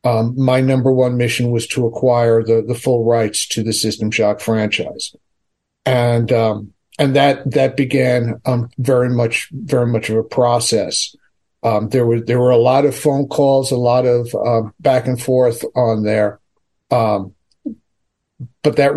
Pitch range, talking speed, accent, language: 115-130 Hz, 170 wpm, American, English